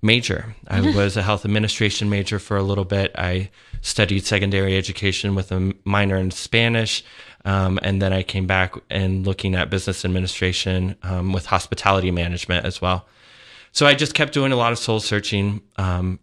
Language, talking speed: English, 180 wpm